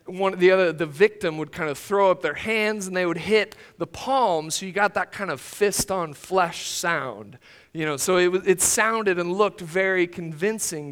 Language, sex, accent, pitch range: English, male, American, 155-190 Hz